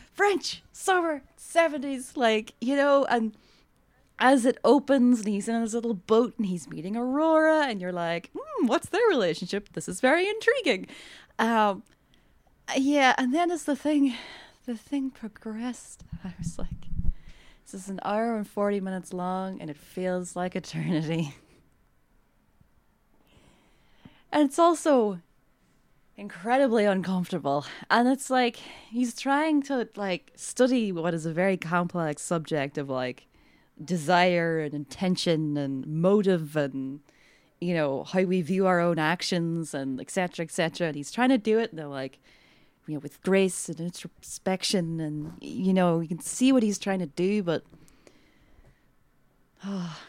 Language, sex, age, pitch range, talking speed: English, female, 20-39, 165-250 Hz, 145 wpm